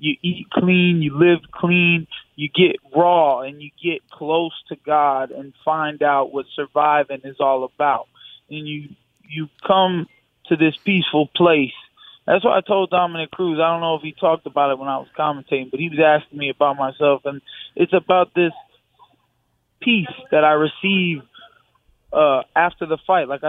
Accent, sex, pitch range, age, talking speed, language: American, male, 145-180 Hz, 20-39, 175 wpm, English